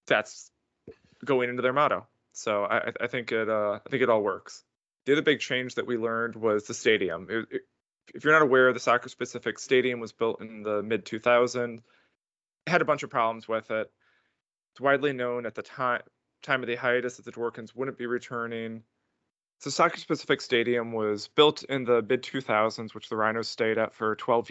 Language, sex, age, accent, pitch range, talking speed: English, male, 20-39, American, 110-130 Hz, 195 wpm